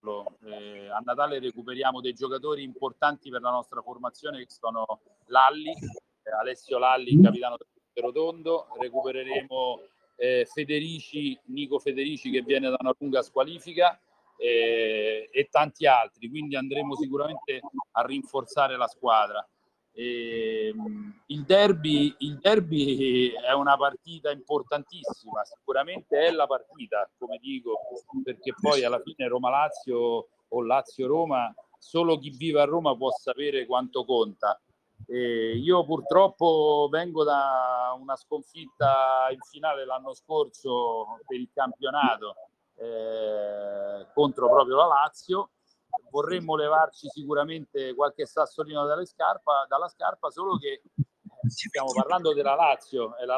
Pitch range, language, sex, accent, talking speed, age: 130-215 Hz, Italian, male, native, 120 wpm, 40-59